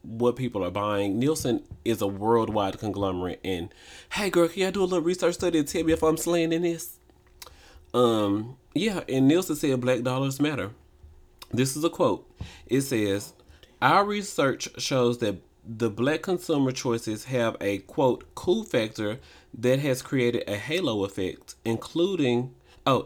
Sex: male